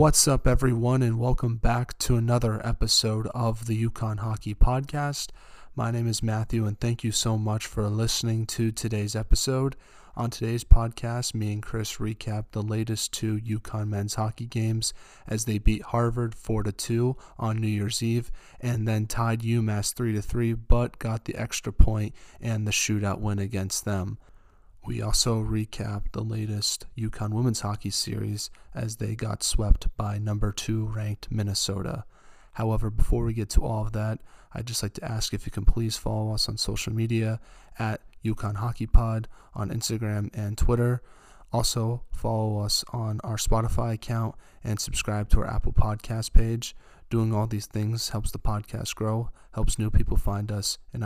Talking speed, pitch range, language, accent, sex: 175 wpm, 105-115 Hz, English, American, male